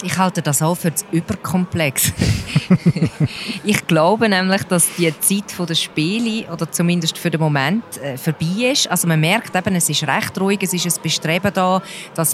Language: German